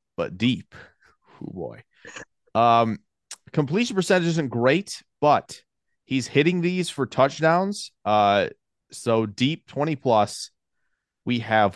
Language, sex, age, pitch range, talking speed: English, male, 30-49, 105-145 Hz, 110 wpm